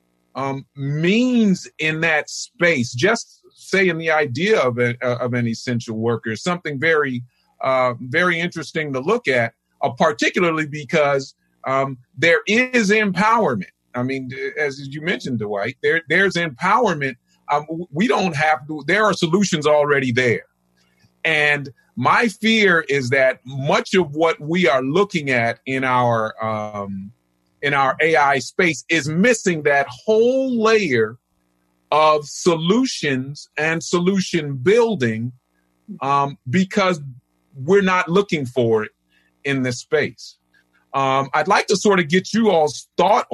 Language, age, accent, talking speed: English, 40-59, American, 135 wpm